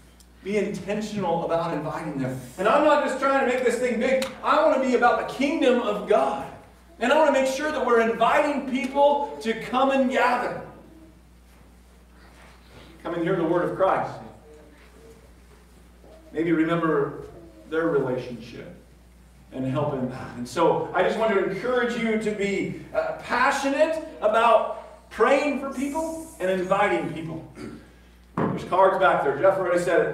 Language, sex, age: English, male, 40-59